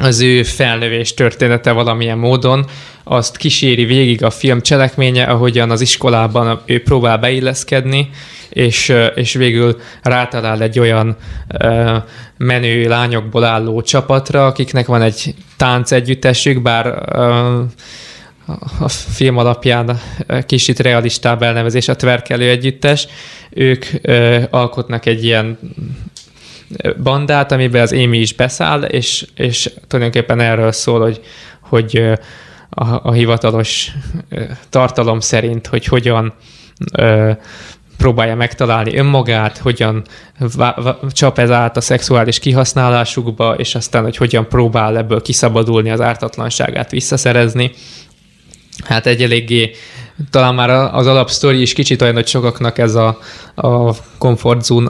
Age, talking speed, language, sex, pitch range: 20-39, 110 wpm, Hungarian, male, 115-130 Hz